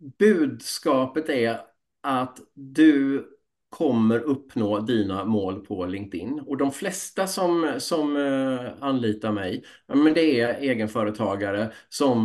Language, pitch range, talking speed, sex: Swedish, 105-140 Hz, 105 wpm, male